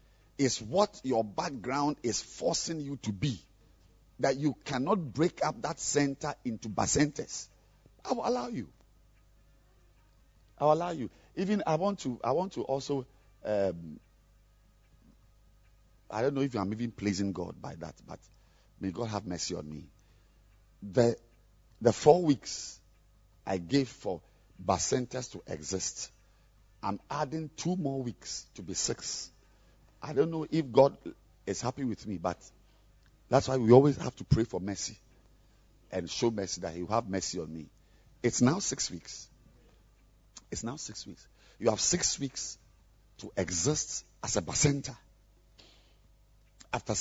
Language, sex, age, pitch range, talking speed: English, male, 50-69, 105-140 Hz, 150 wpm